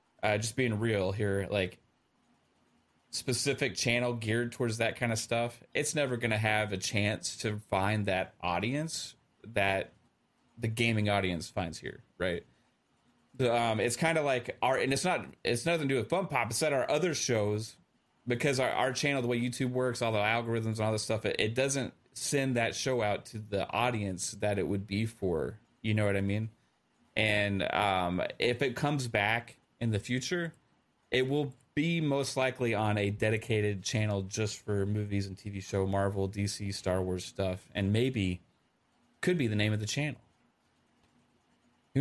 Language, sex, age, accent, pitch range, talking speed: English, male, 30-49, American, 100-130 Hz, 185 wpm